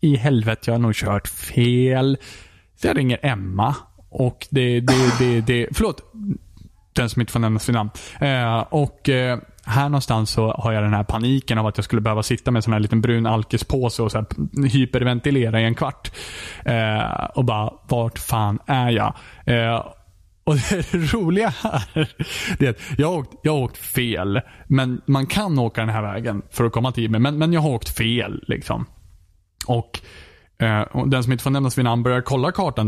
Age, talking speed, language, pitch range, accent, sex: 20-39, 185 wpm, Swedish, 110-140 Hz, Norwegian, male